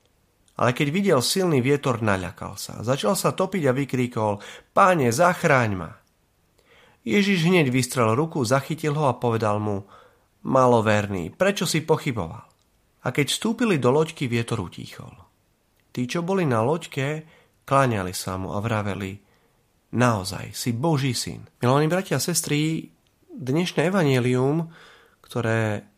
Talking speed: 130 wpm